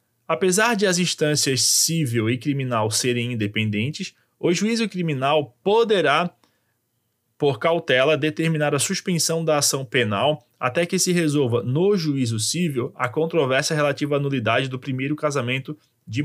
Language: Portuguese